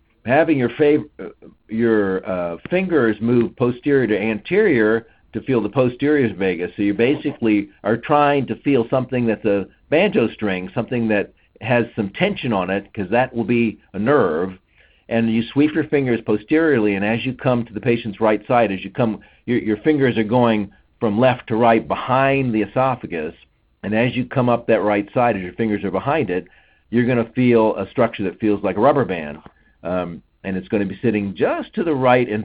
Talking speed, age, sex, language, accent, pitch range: 200 wpm, 50-69, male, English, American, 100-120 Hz